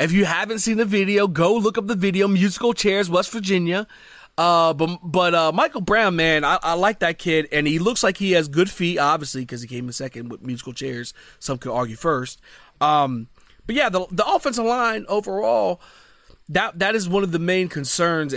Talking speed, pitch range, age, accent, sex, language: 210 wpm, 130-195 Hz, 30-49, American, male, English